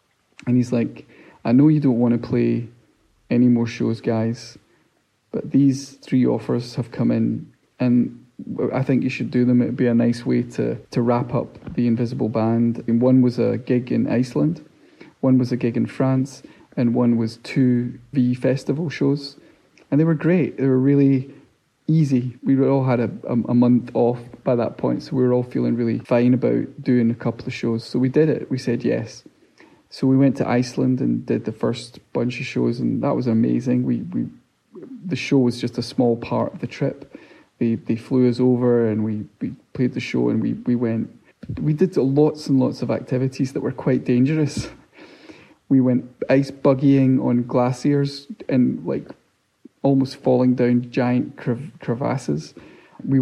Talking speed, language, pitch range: 190 wpm, English, 120-135 Hz